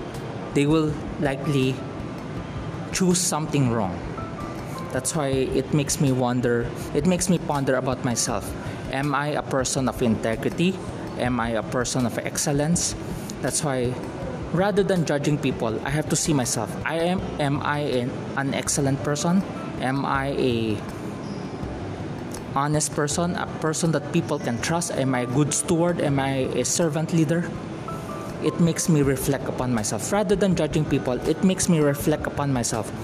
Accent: Filipino